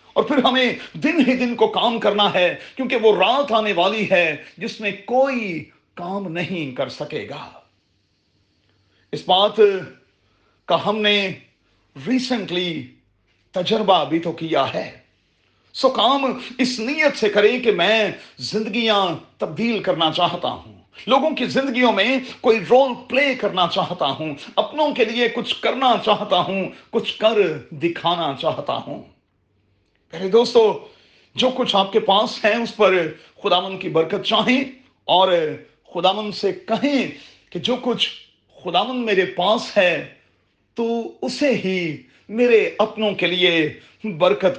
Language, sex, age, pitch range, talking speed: Urdu, male, 40-59, 160-230 Hz, 135 wpm